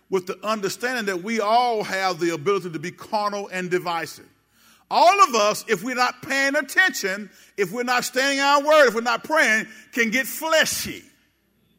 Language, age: English, 50-69